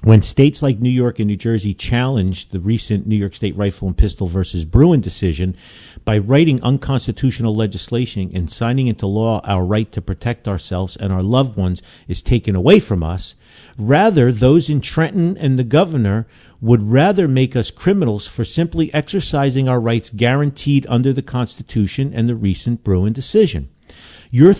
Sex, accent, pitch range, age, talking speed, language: male, American, 105-135 Hz, 50-69, 170 wpm, English